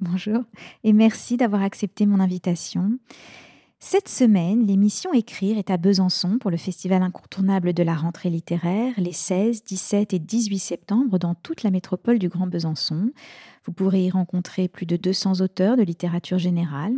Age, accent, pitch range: 40-59, French, 185-230 Hz